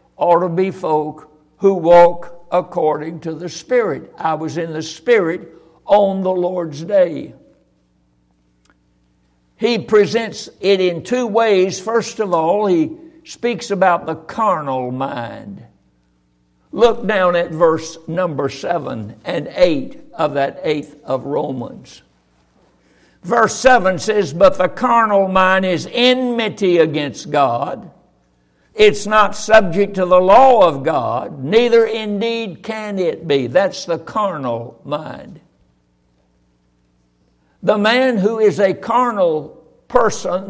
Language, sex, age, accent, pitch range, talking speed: English, male, 60-79, American, 140-215 Hz, 120 wpm